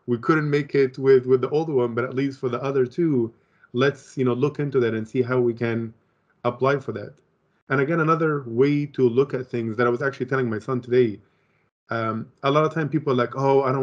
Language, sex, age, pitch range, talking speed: English, male, 30-49, 125-150 Hz, 245 wpm